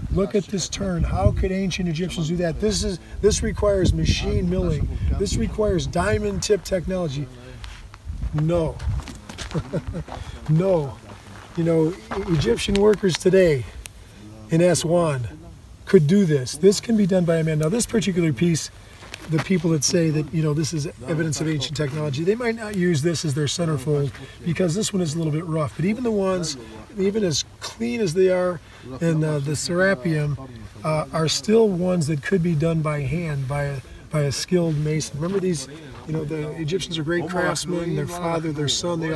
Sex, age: male, 40-59